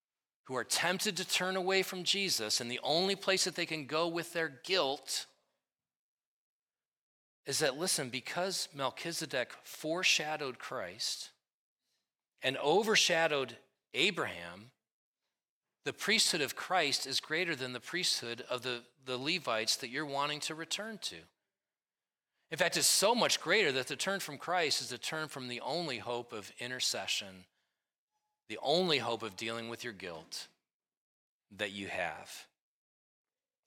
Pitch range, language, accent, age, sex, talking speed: 120-180 Hz, English, American, 30-49, male, 140 wpm